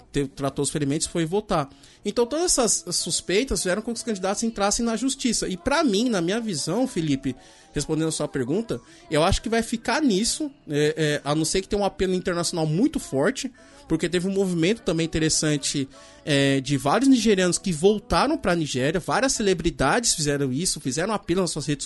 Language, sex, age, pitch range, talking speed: Portuguese, male, 20-39, 145-205 Hz, 185 wpm